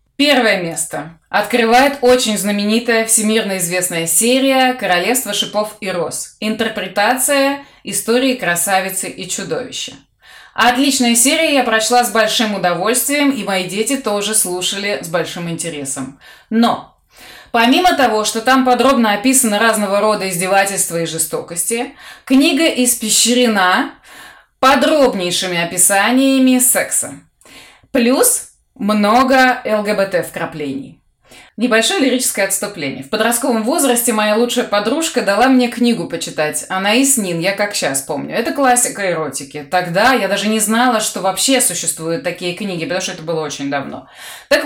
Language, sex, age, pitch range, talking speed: Russian, female, 20-39, 190-255 Hz, 120 wpm